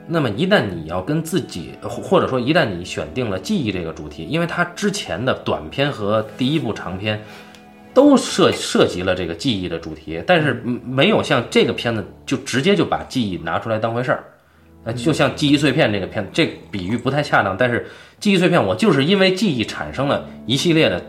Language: Chinese